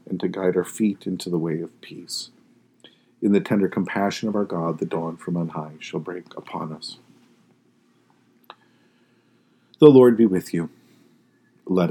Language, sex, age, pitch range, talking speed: English, male, 50-69, 90-110 Hz, 160 wpm